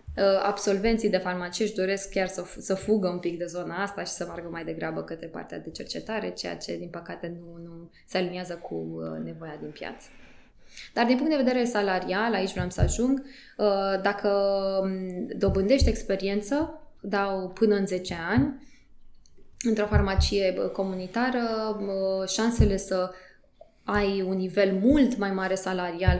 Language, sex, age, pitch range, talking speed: Romanian, female, 20-39, 175-205 Hz, 150 wpm